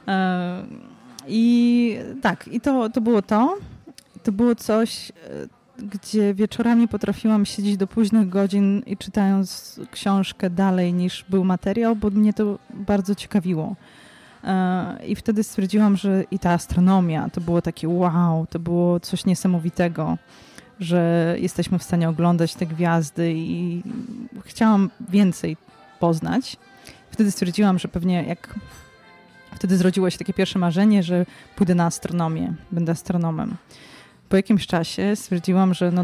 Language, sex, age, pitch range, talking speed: Polish, female, 20-39, 175-210 Hz, 130 wpm